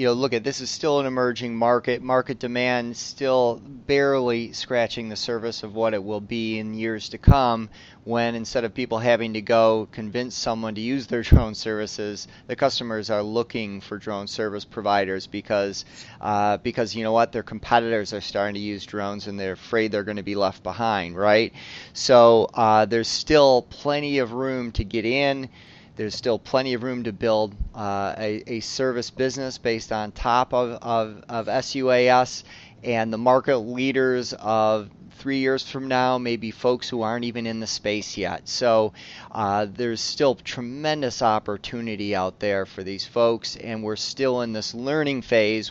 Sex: male